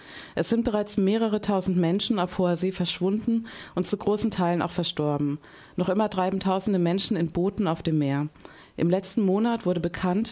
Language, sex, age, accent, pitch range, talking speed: German, female, 30-49, German, 170-200 Hz, 180 wpm